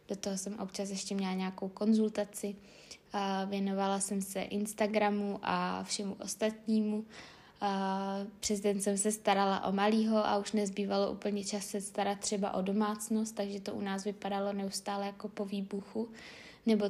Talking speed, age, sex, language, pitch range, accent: 155 wpm, 20-39, female, Czech, 195-210 Hz, native